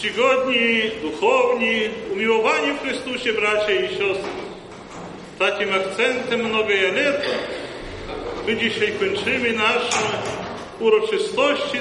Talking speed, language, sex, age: 85 wpm, Polish, male, 50-69